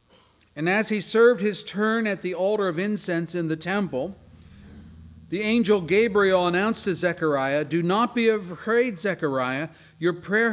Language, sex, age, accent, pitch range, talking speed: English, male, 40-59, American, 145-200 Hz, 155 wpm